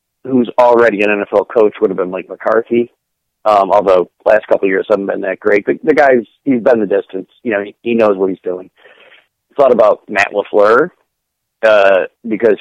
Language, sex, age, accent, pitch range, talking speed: English, male, 50-69, American, 100-120 Hz, 195 wpm